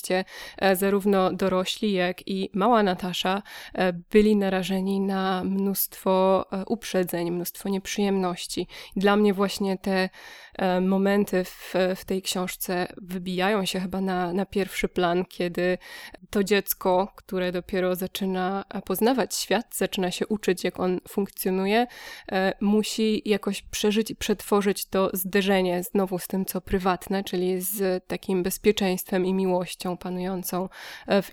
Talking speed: 120 wpm